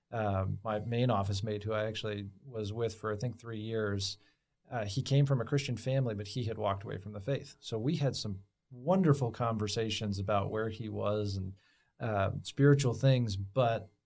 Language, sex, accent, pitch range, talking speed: English, male, American, 110-135 Hz, 190 wpm